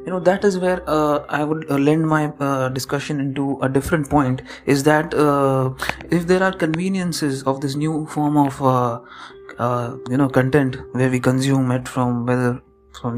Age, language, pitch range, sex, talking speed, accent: 20-39, English, 130-150 Hz, male, 185 wpm, Indian